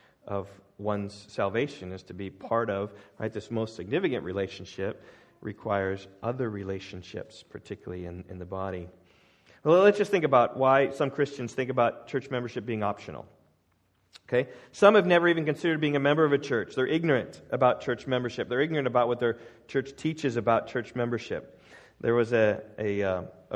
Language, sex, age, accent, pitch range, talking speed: English, male, 40-59, American, 105-140 Hz, 170 wpm